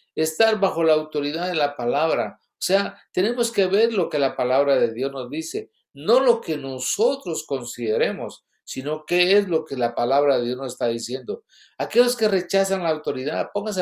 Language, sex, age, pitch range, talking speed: English, male, 60-79, 150-210 Hz, 185 wpm